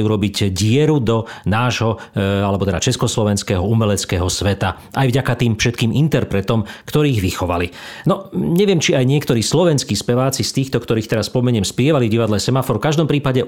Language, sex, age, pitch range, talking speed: Slovak, male, 40-59, 105-135 Hz, 150 wpm